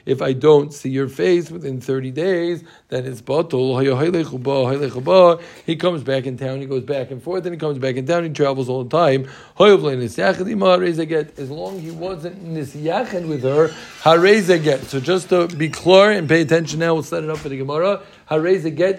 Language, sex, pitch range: English, male, 135-180 Hz